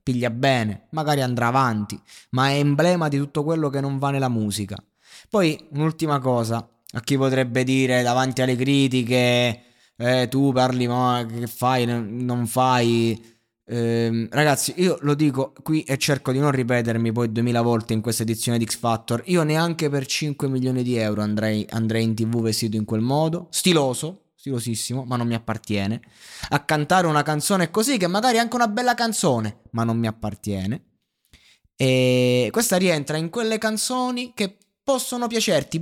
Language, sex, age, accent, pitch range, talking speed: Italian, male, 20-39, native, 120-170 Hz, 165 wpm